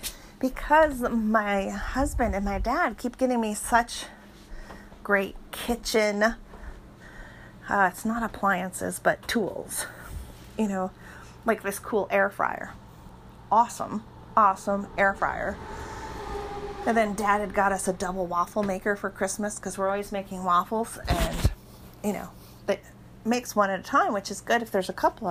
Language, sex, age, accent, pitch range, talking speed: English, female, 40-59, American, 185-220 Hz, 145 wpm